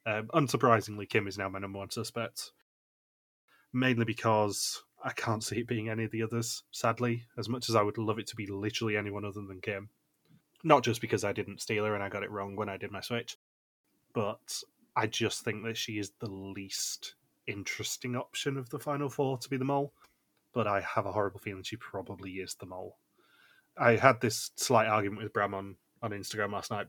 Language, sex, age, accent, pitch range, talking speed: English, male, 20-39, British, 100-120 Hz, 210 wpm